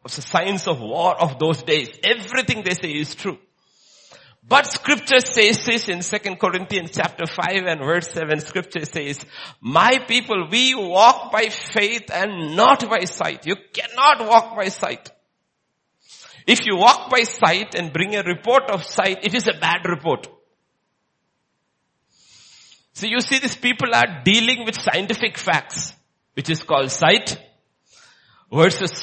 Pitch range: 155-215 Hz